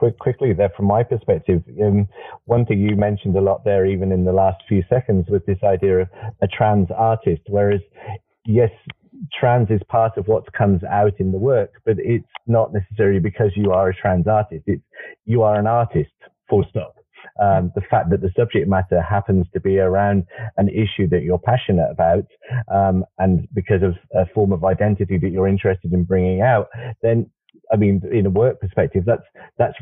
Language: English